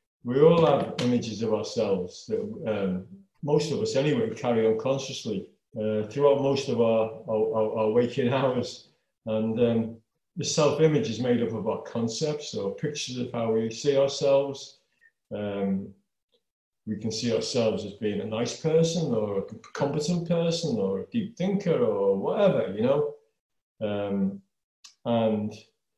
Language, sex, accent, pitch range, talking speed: English, male, British, 110-165 Hz, 150 wpm